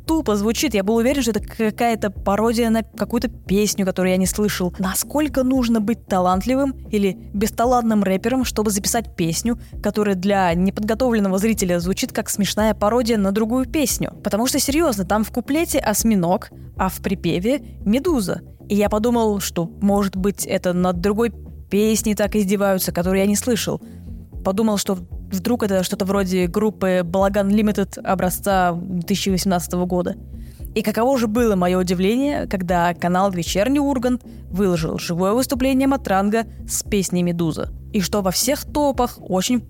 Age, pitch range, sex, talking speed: 20-39, 190-240 Hz, female, 150 wpm